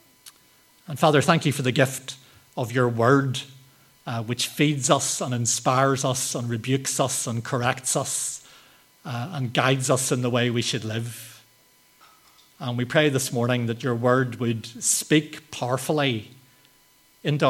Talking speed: 155 wpm